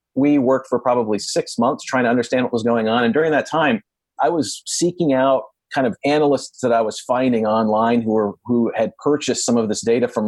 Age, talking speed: 40-59, 230 wpm